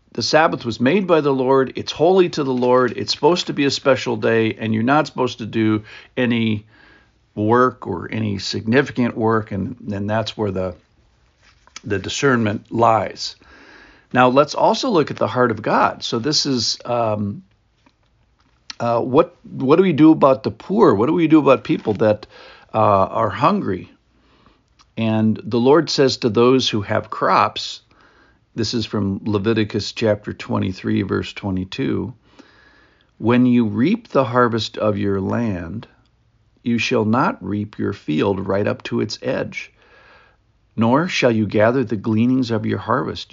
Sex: male